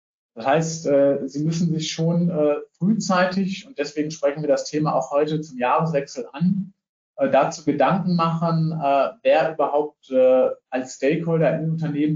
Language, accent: German, German